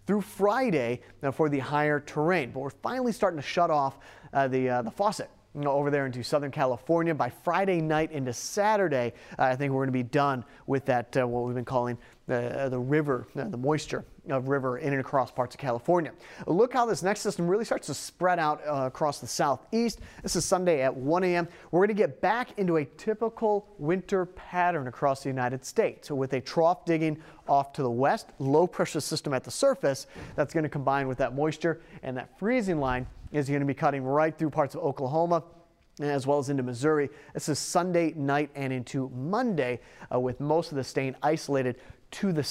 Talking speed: 205 wpm